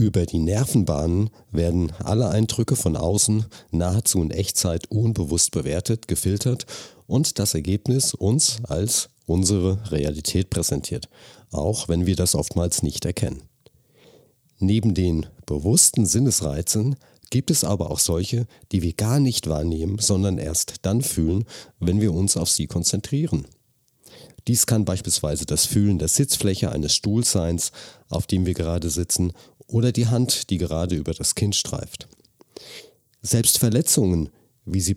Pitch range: 85-120 Hz